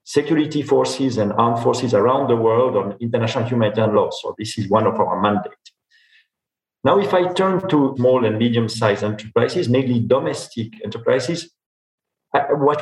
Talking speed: 155 wpm